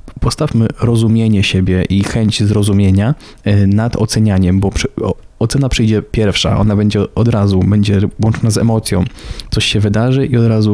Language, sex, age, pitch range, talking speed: Polish, male, 20-39, 105-120 Hz, 155 wpm